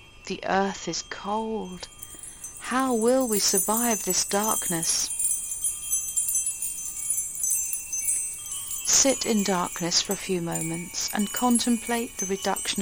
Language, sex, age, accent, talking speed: English, female, 40-59, British, 100 wpm